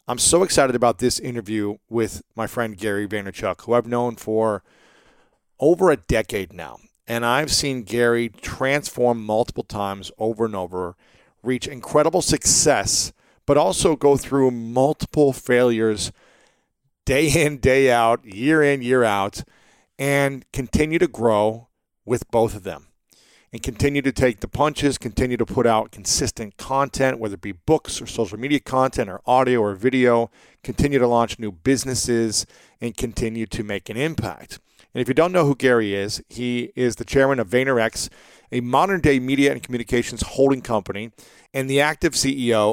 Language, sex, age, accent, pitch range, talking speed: English, male, 40-59, American, 110-135 Hz, 160 wpm